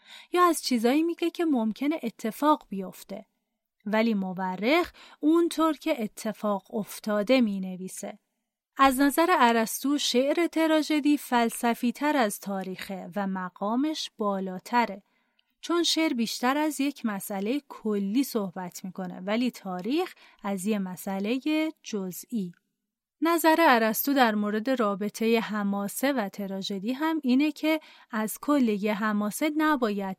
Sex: female